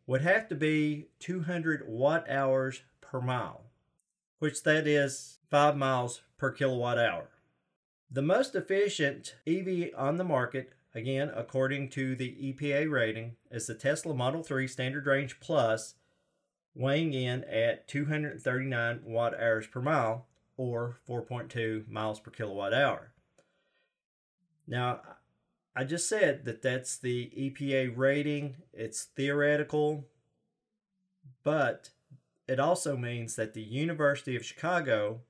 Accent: American